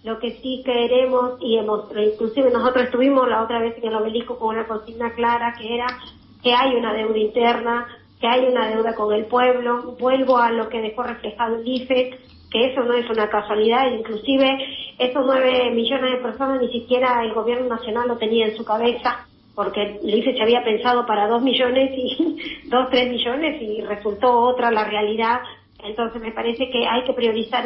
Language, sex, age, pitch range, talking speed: Spanish, female, 40-59, 225-260 Hz, 185 wpm